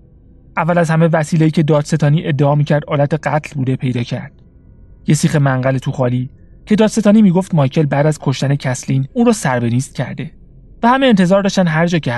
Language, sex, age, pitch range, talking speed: Persian, male, 30-49, 125-160 Hz, 190 wpm